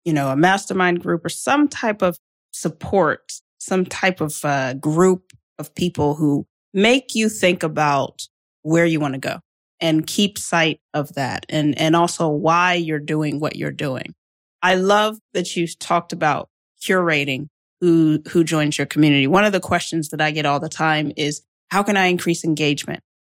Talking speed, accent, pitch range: 180 wpm, American, 155-190 Hz